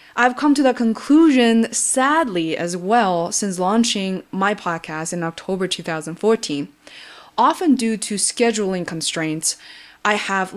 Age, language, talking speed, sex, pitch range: 20-39, English, 125 wpm, female, 185-245 Hz